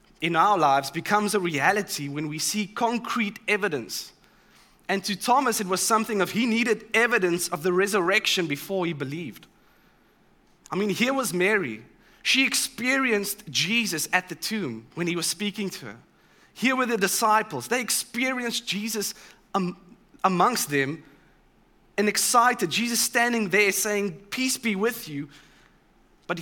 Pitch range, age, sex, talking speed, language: 175-220 Hz, 20-39, male, 145 wpm, English